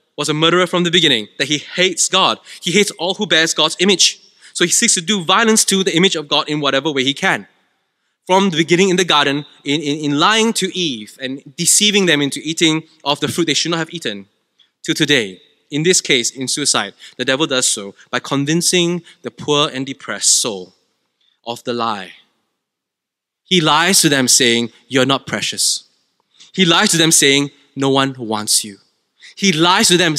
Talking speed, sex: 200 wpm, male